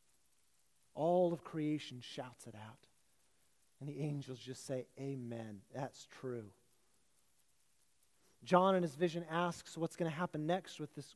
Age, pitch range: 40-59, 145-180 Hz